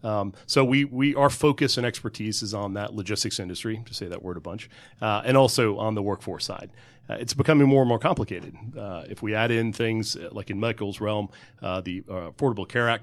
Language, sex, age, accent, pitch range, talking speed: English, male, 40-59, American, 100-120 Hz, 225 wpm